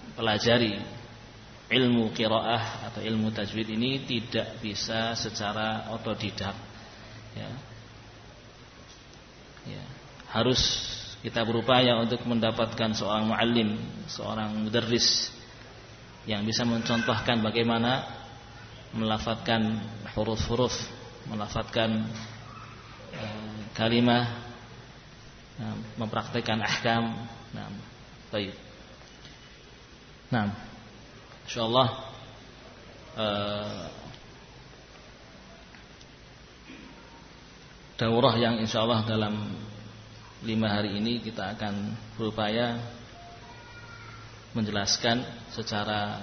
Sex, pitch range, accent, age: male, 110-120 Hz, native, 30-49